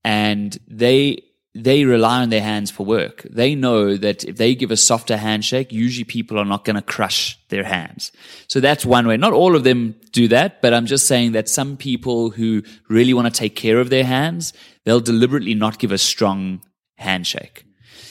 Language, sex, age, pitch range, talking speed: English, male, 20-39, 115-140 Hz, 200 wpm